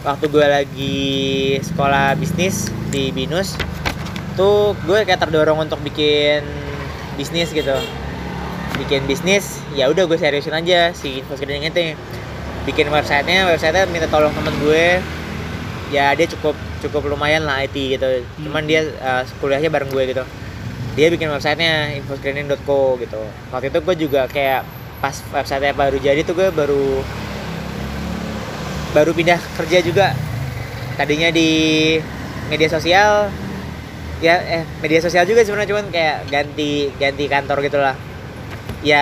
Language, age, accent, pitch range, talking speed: Indonesian, 20-39, native, 135-160 Hz, 130 wpm